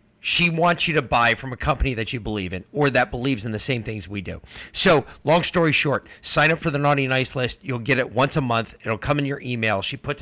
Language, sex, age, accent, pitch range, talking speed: English, male, 30-49, American, 115-155 Hz, 265 wpm